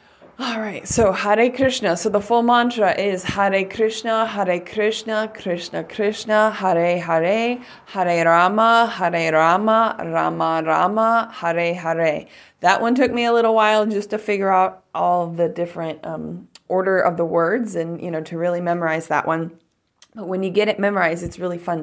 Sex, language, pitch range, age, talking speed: female, English, 170-210 Hz, 20-39, 170 wpm